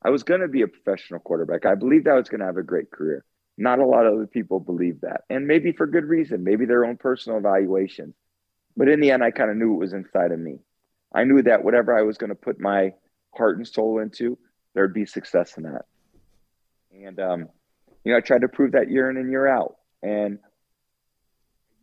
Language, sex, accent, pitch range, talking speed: English, male, American, 95-120 Hz, 235 wpm